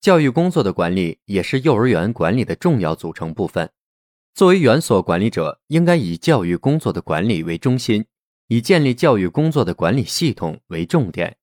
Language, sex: Chinese, male